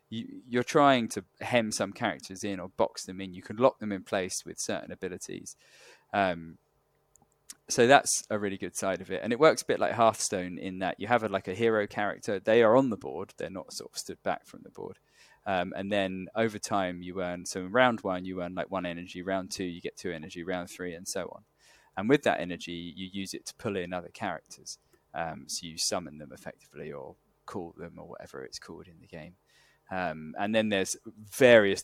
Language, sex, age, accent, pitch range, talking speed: English, male, 20-39, British, 85-105 Hz, 225 wpm